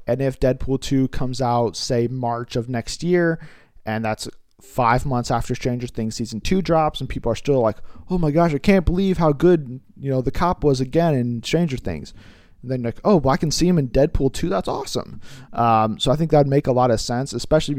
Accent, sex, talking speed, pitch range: American, male, 225 wpm, 115-150 Hz